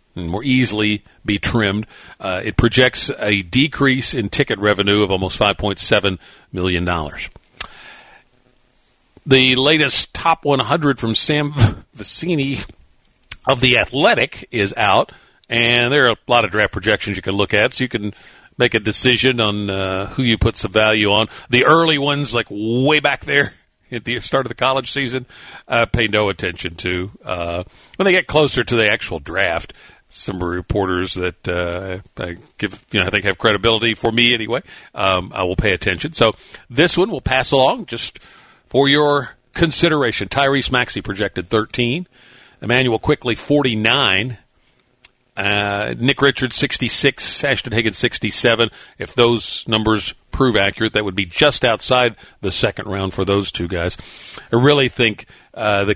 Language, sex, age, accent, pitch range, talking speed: English, male, 50-69, American, 100-130 Hz, 160 wpm